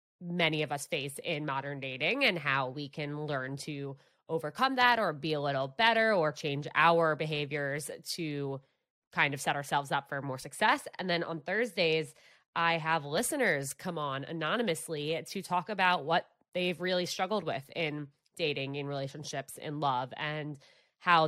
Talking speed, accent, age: 165 wpm, American, 20-39